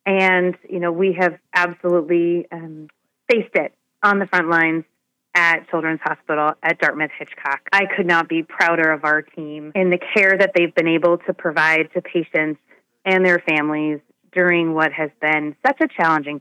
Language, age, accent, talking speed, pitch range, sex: English, 30-49, American, 170 wpm, 160-185 Hz, female